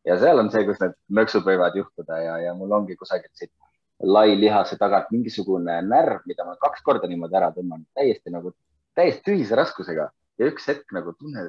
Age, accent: 30-49, Finnish